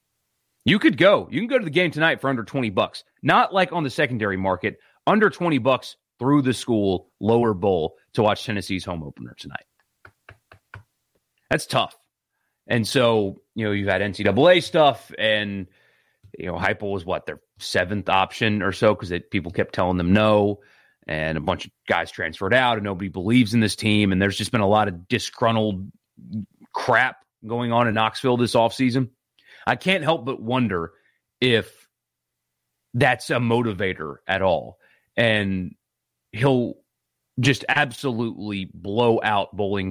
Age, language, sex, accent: 30-49, English, male, American